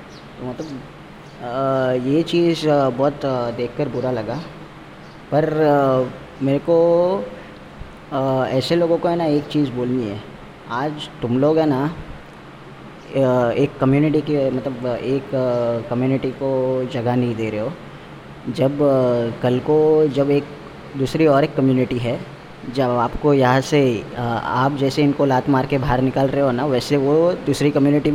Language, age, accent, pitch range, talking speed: Hindi, 20-39, native, 125-150 Hz, 140 wpm